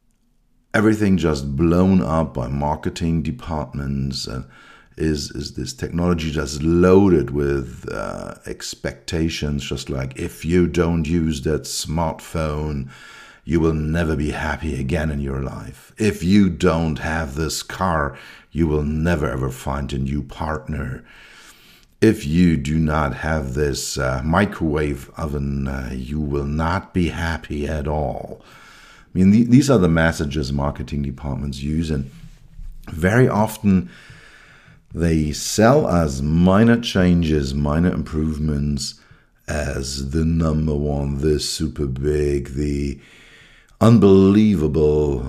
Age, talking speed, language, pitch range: 60-79, 125 wpm, English, 70-85 Hz